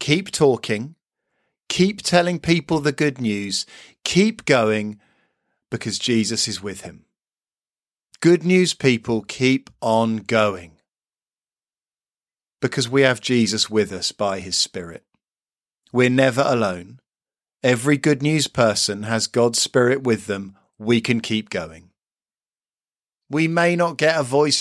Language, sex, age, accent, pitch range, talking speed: English, male, 40-59, British, 115-165 Hz, 125 wpm